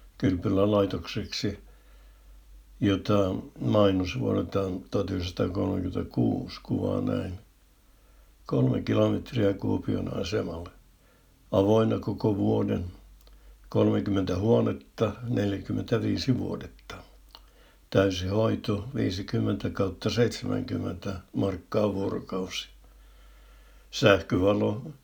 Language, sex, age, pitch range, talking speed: Finnish, male, 60-79, 95-110 Hz, 60 wpm